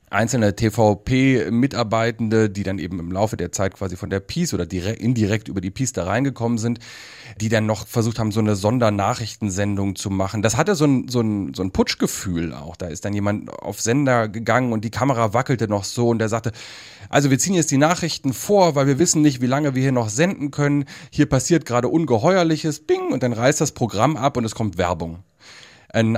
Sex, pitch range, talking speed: male, 100-135 Hz, 205 wpm